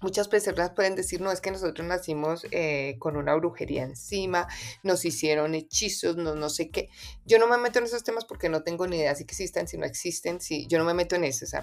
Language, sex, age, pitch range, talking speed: Spanish, female, 30-49, 155-205 Hz, 245 wpm